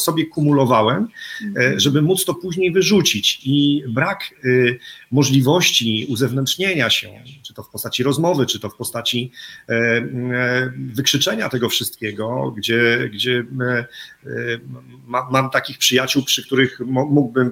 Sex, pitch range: male, 115-140 Hz